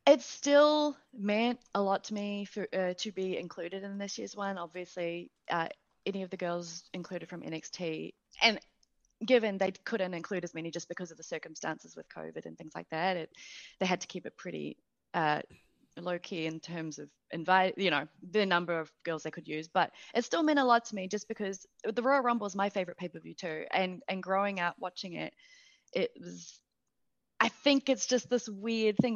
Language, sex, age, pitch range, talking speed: English, female, 20-39, 175-230 Hz, 205 wpm